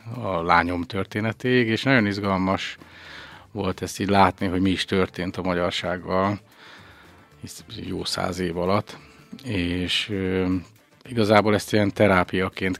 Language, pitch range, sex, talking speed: Hungarian, 90-100 Hz, male, 125 wpm